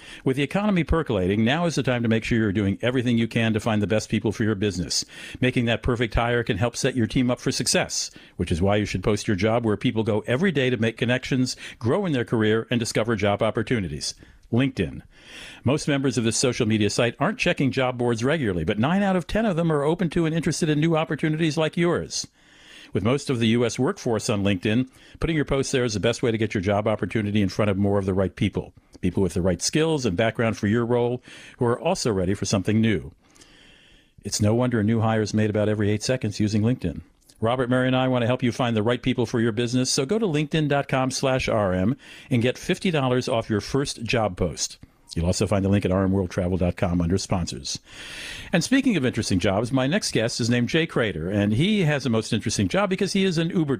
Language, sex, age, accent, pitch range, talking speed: English, male, 50-69, American, 105-135 Hz, 235 wpm